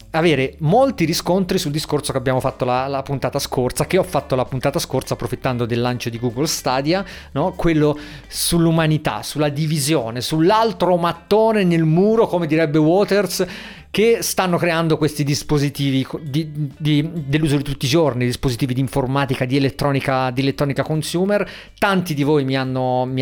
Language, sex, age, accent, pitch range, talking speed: Italian, male, 40-59, native, 135-180 Hz, 150 wpm